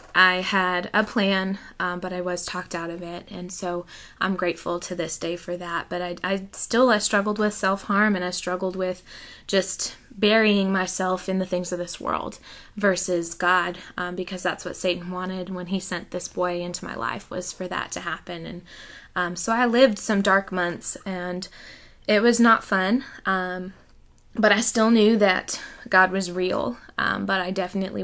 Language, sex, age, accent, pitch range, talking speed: English, female, 20-39, American, 180-205 Hz, 190 wpm